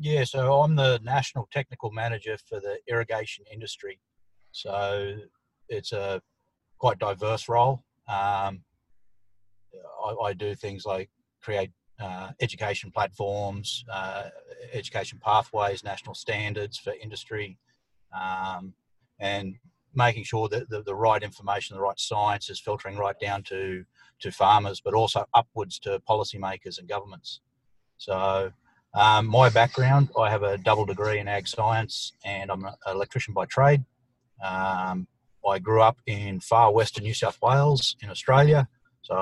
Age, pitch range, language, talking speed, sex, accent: 30-49, 100-130 Hz, English, 140 wpm, male, Australian